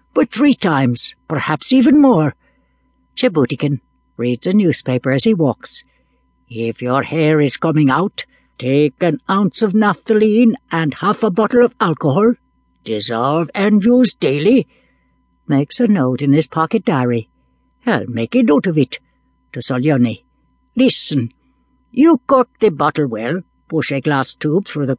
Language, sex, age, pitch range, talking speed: English, female, 60-79, 135-215 Hz, 145 wpm